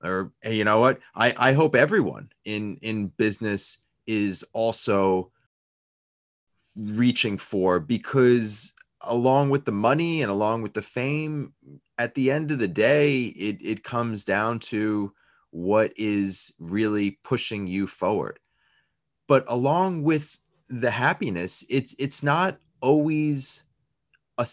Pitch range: 110-145 Hz